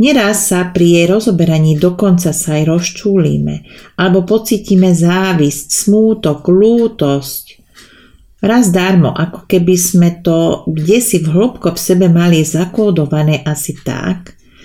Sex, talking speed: female, 125 wpm